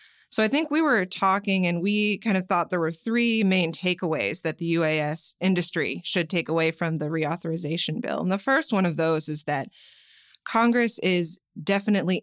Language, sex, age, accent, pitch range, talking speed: English, female, 20-39, American, 160-190 Hz, 185 wpm